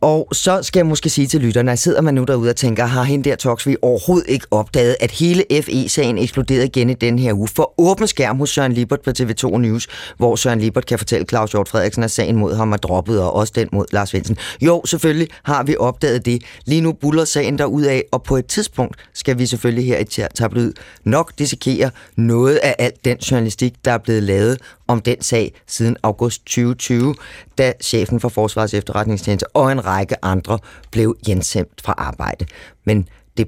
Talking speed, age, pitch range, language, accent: 205 wpm, 30-49, 110-140 Hz, Danish, native